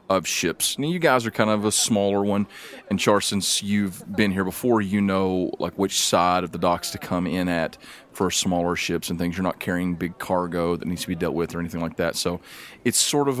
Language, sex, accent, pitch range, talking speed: English, male, American, 90-105 Hz, 240 wpm